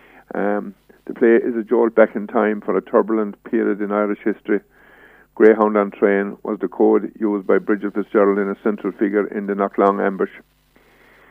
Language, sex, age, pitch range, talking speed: English, male, 50-69, 100-110 Hz, 180 wpm